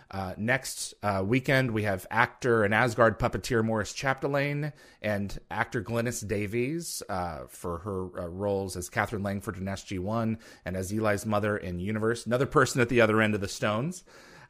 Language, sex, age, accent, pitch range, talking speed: English, male, 30-49, American, 100-130 Hz, 170 wpm